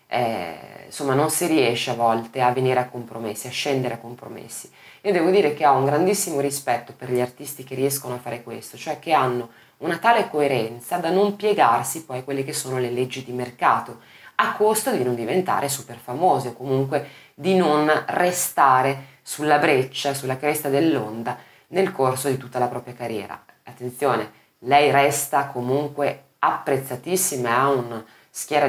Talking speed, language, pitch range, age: 170 wpm, Italian, 125-145 Hz, 20-39